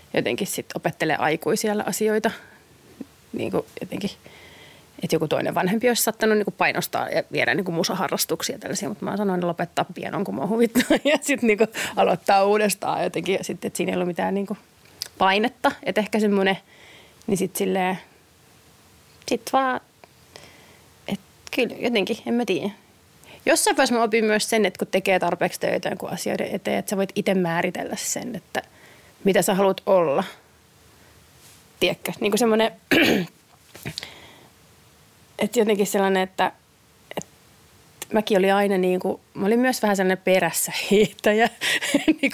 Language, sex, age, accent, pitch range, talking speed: Finnish, female, 30-49, native, 185-225 Hz, 150 wpm